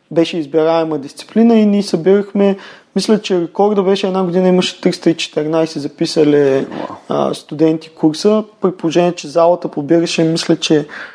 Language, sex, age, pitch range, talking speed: Bulgarian, male, 20-39, 155-200 Hz, 135 wpm